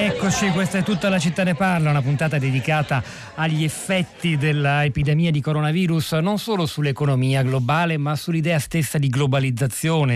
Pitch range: 125-150 Hz